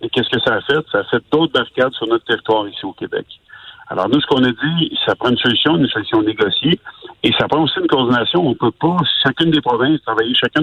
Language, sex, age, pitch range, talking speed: French, male, 50-69, 120-165 Hz, 250 wpm